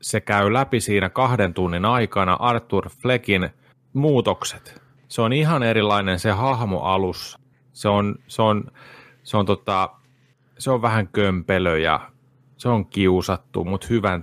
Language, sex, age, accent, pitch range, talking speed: Finnish, male, 30-49, native, 95-130 Hz, 145 wpm